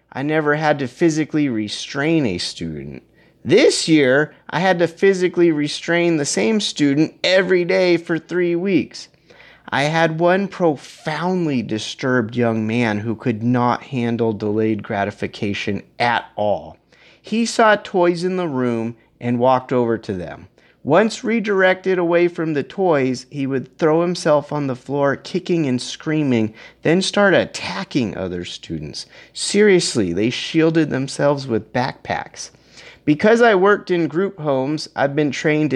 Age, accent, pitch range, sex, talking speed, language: 30-49, American, 115-170 Hz, male, 145 wpm, English